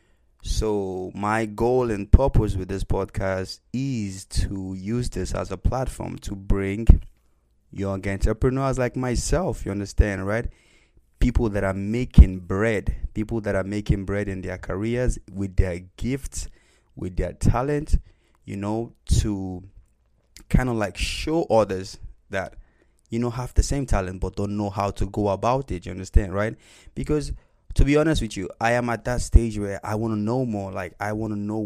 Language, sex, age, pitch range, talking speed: English, male, 20-39, 95-115 Hz, 170 wpm